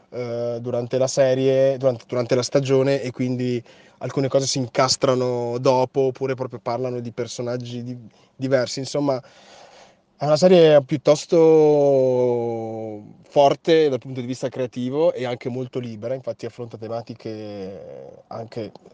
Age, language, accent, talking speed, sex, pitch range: 20-39, Italian, native, 125 wpm, male, 115-135 Hz